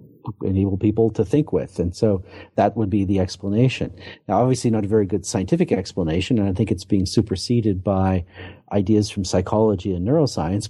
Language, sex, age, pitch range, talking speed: English, male, 50-69, 95-115 Hz, 185 wpm